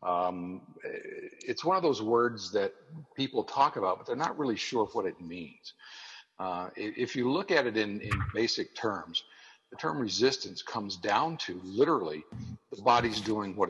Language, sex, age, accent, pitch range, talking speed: English, male, 60-79, American, 85-120 Hz, 175 wpm